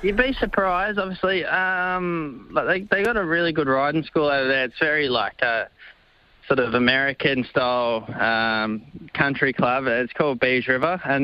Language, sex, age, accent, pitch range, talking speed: English, male, 20-39, Australian, 125-145 Hz, 170 wpm